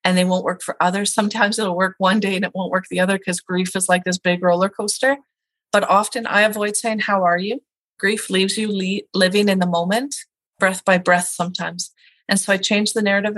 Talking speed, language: 230 wpm, English